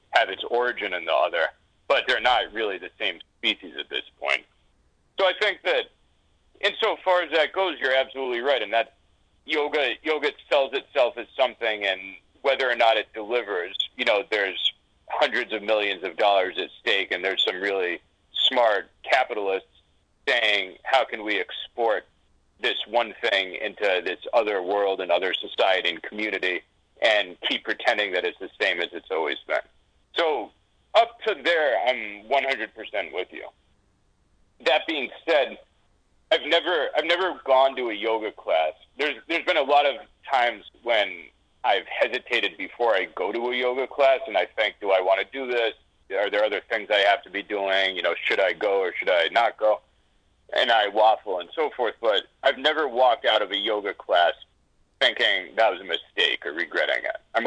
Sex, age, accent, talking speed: male, 40-59, American, 180 wpm